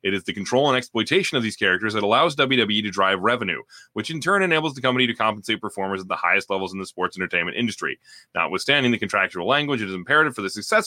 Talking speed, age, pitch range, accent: 240 wpm, 30-49, 110-160 Hz, American